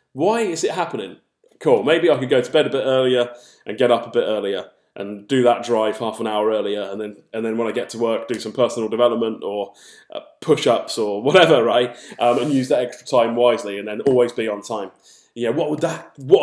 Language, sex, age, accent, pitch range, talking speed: English, male, 20-39, British, 120-190 Hz, 235 wpm